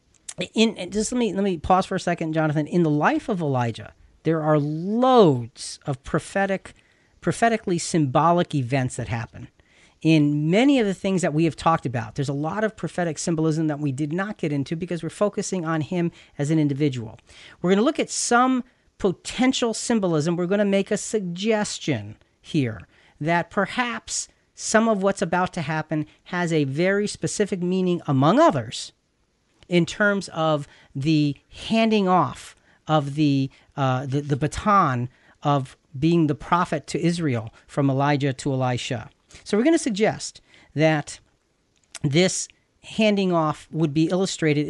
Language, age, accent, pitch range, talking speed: English, 40-59, American, 145-195 Hz, 160 wpm